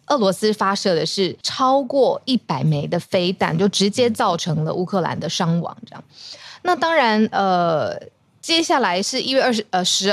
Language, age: Chinese, 20-39